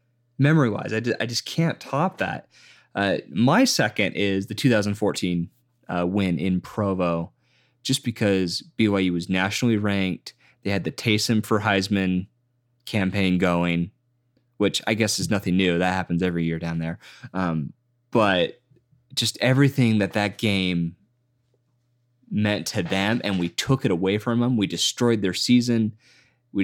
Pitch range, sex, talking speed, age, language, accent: 95-125 Hz, male, 145 wpm, 20-39, English, American